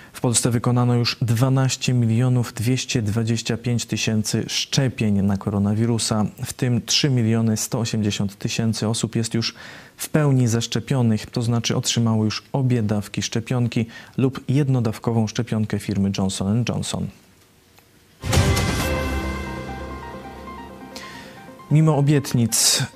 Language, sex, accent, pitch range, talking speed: Polish, male, native, 110-130 Hz, 100 wpm